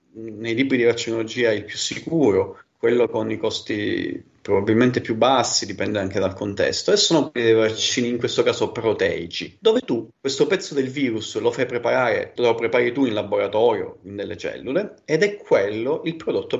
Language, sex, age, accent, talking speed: Italian, male, 30-49, native, 170 wpm